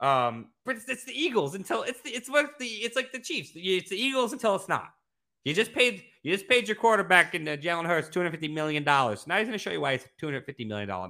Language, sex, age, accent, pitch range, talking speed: English, male, 30-49, American, 125-190 Hz, 290 wpm